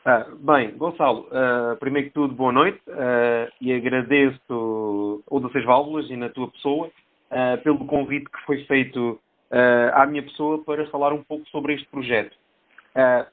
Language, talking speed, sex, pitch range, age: Portuguese, 165 wpm, male, 135-165 Hz, 30-49